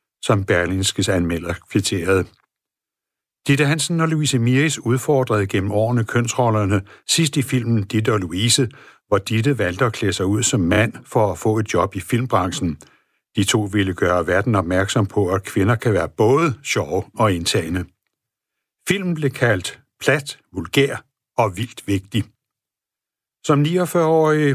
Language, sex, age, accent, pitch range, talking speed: Danish, male, 60-79, native, 105-135 Hz, 145 wpm